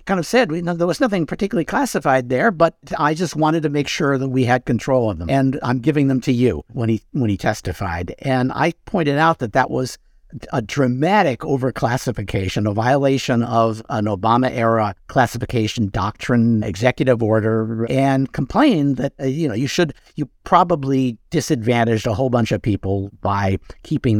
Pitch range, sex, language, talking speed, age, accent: 120-160 Hz, male, English, 175 wpm, 50-69, American